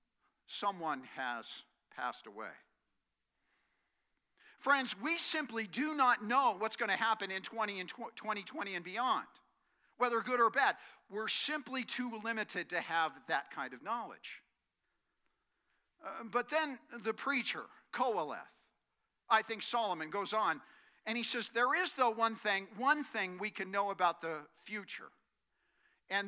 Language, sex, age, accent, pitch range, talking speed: English, male, 50-69, American, 190-250 Hz, 135 wpm